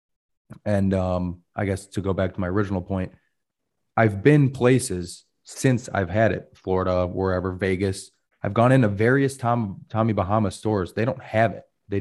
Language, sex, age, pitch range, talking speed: English, male, 30-49, 90-110 Hz, 170 wpm